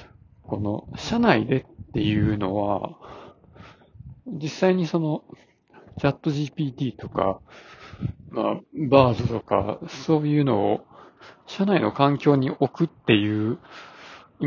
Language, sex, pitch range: Japanese, male, 110-150 Hz